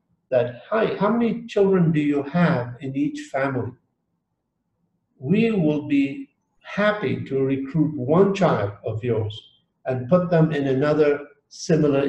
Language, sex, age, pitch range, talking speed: English, male, 50-69, 120-155 Hz, 135 wpm